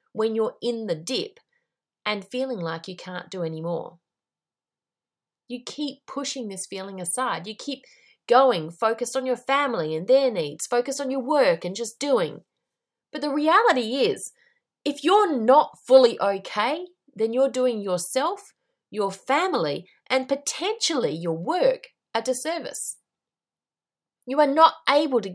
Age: 30-49